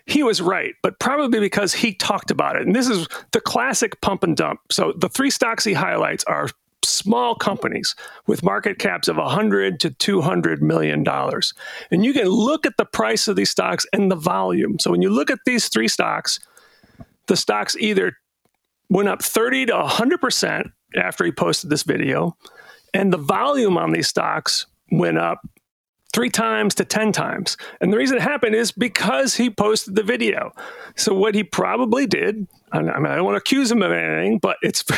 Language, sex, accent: English, male, American